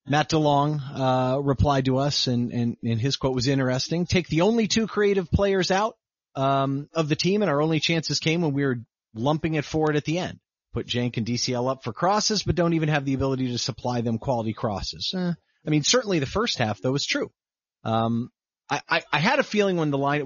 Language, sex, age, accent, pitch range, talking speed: English, male, 30-49, American, 130-175 Hz, 225 wpm